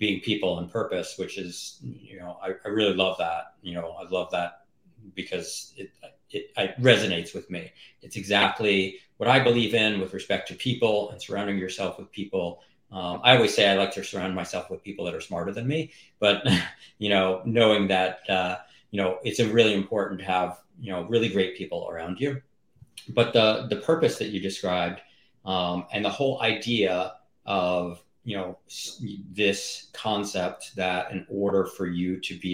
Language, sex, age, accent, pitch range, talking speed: English, male, 40-59, American, 90-105 Hz, 185 wpm